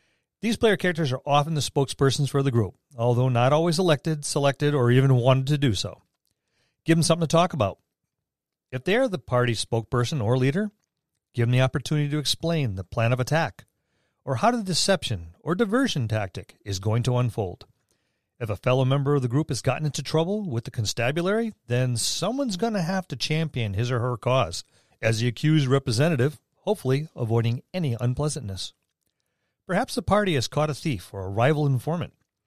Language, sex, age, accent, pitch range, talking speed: English, male, 40-59, American, 115-155 Hz, 185 wpm